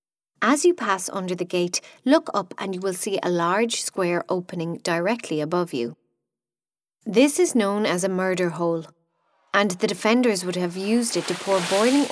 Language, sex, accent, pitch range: English, female, Irish, 170-215 Hz